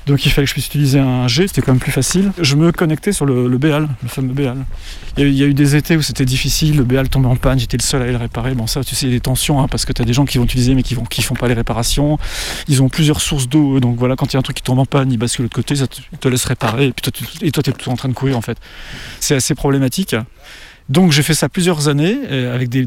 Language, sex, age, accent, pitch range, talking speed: French, male, 30-49, French, 125-150 Hz, 325 wpm